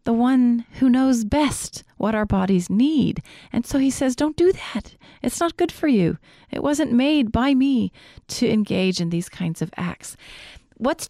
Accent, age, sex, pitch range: American, 40-59, female, 185-270 Hz